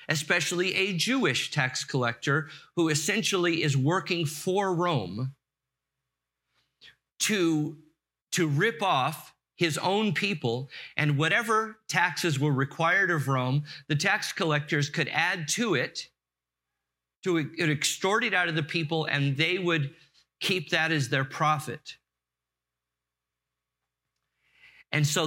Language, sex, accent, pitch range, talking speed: English, male, American, 125-165 Hz, 115 wpm